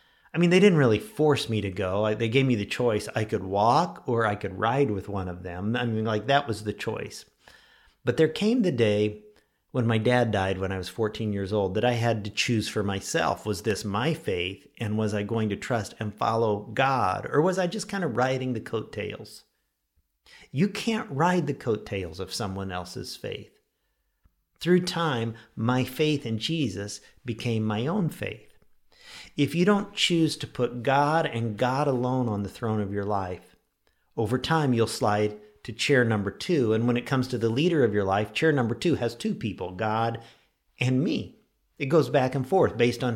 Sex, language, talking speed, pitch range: male, English, 200 wpm, 105-130 Hz